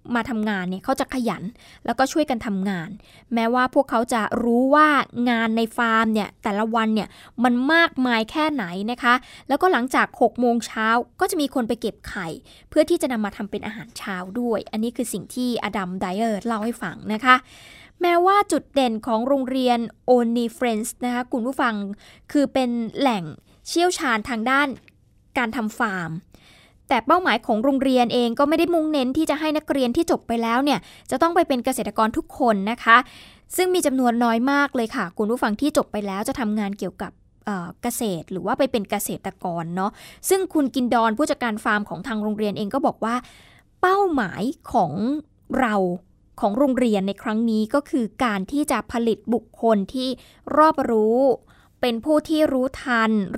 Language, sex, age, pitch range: Thai, female, 20-39, 220-275 Hz